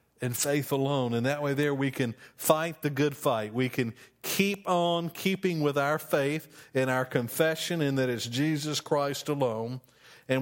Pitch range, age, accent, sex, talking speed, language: 120-145 Hz, 50-69, American, male, 180 wpm, English